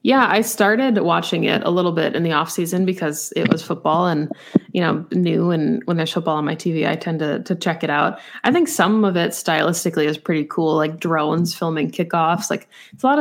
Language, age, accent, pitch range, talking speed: English, 20-39, American, 160-190 Hz, 225 wpm